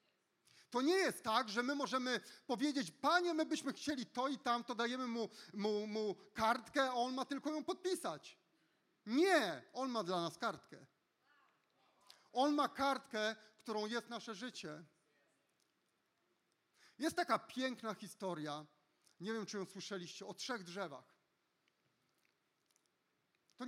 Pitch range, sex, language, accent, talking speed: 185-245 Hz, male, Polish, native, 135 wpm